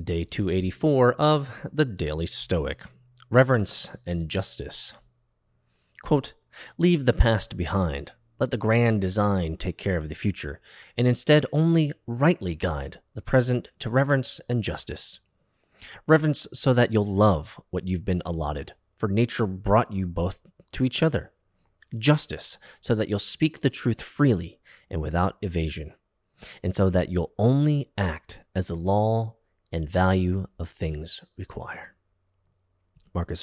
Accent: American